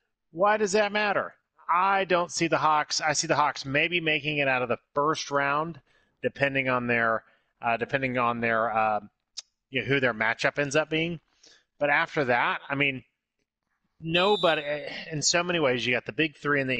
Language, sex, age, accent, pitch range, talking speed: English, male, 30-49, American, 120-150 Hz, 195 wpm